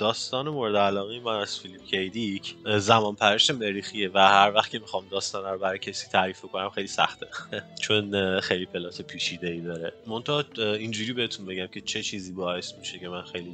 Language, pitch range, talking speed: Persian, 95-115 Hz, 180 wpm